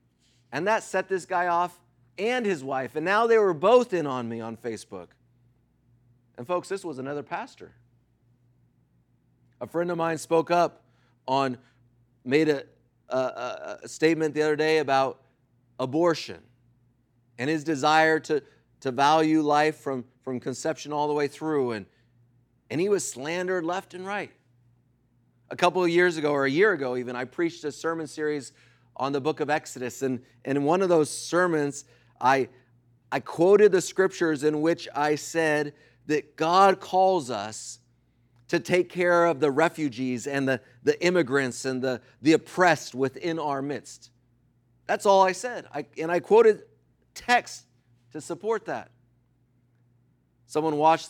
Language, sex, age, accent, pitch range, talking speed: English, male, 30-49, American, 125-165 Hz, 155 wpm